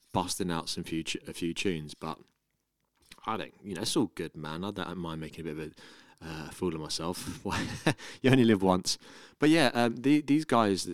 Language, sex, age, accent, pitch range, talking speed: English, male, 20-39, British, 80-95 Hz, 210 wpm